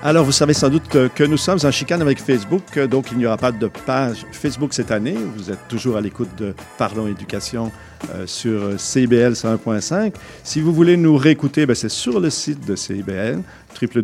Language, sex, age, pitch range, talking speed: French, male, 50-69, 110-130 Hz, 195 wpm